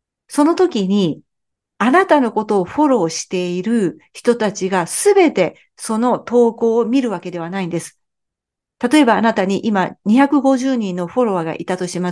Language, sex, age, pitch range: Japanese, female, 50-69, 185-255 Hz